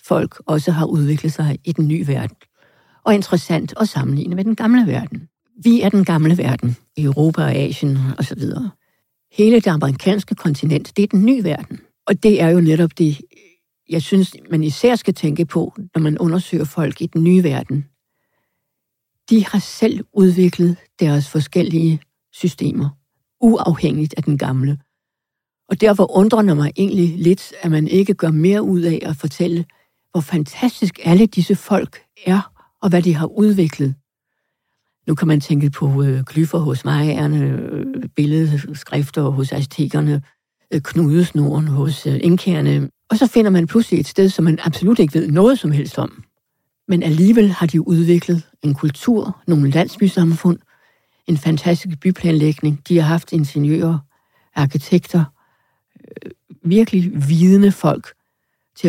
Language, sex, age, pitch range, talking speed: Danish, female, 60-79, 150-185 Hz, 155 wpm